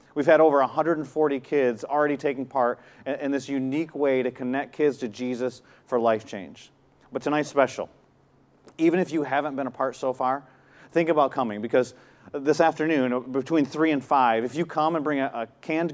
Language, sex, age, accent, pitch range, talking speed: English, male, 40-59, American, 130-160 Hz, 180 wpm